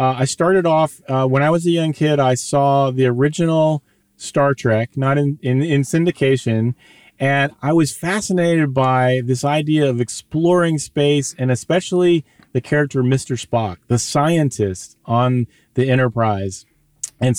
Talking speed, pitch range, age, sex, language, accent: 150 wpm, 130-165 Hz, 30-49, male, English, American